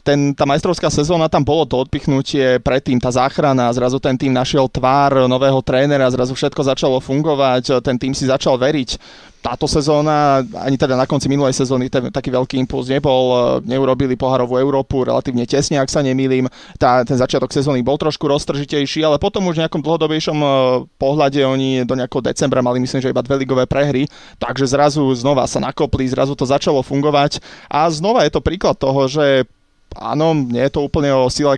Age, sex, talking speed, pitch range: 20-39, male, 180 wpm, 130-145 Hz